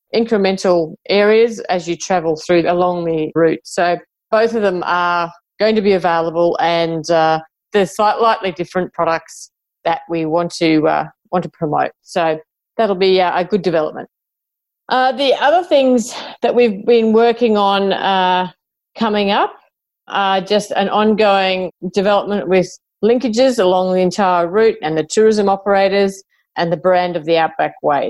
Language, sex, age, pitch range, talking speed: English, female, 40-59, 175-225 Hz, 155 wpm